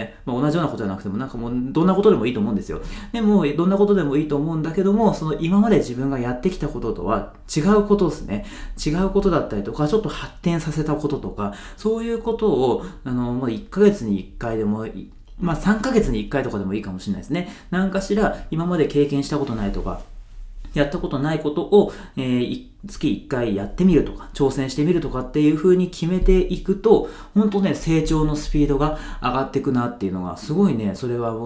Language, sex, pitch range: Japanese, male, 120-185 Hz